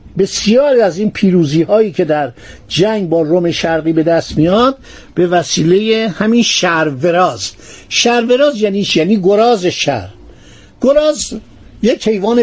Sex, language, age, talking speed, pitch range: male, Persian, 50-69, 120 wpm, 170-230 Hz